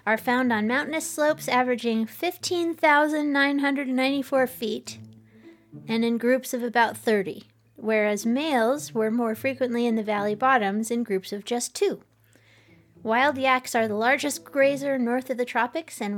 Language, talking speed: English, 145 wpm